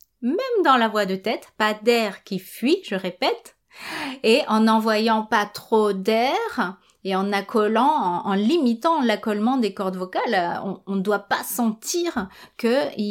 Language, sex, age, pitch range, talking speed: French, female, 30-49, 195-255 Hz, 155 wpm